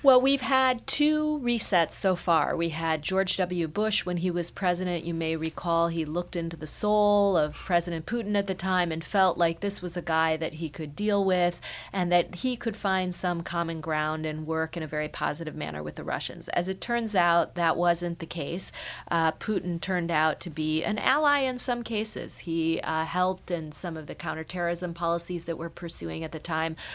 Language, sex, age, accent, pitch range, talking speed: English, female, 40-59, American, 165-200 Hz, 210 wpm